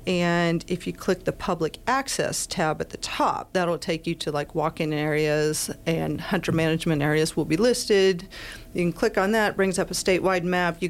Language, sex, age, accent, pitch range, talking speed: English, female, 40-59, American, 160-190 Hz, 200 wpm